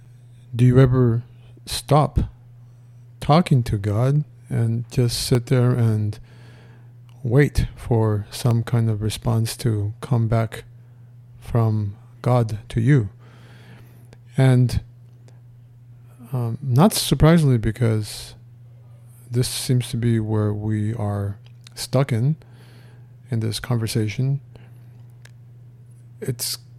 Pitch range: 115-120 Hz